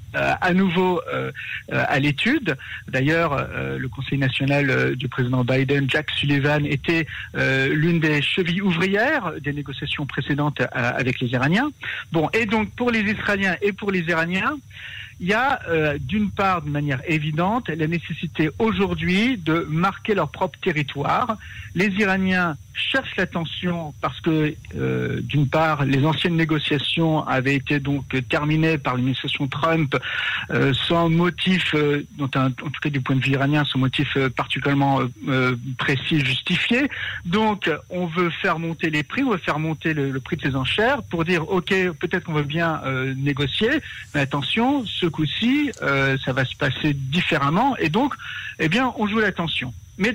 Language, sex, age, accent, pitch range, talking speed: French, male, 50-69, French, 140-185 Hz, 165 wpm